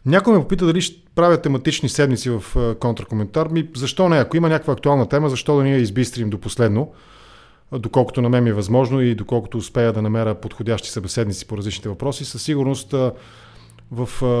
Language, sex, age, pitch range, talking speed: English, male, 30-49, 110-130 Hz, 165 wpm